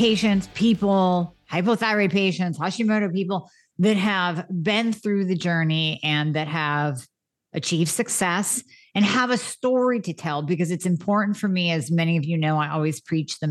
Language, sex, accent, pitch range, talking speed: English, female, American, 165-210 Hz, 165 wpm